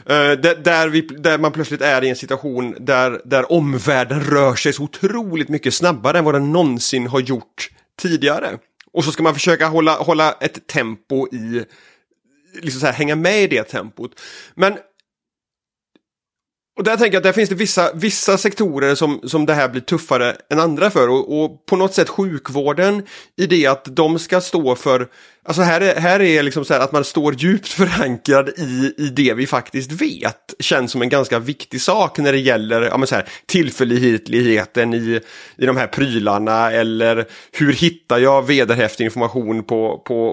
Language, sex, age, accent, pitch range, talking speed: Swedish, male, 30-49, native, 125-170 Hz, 185 wpm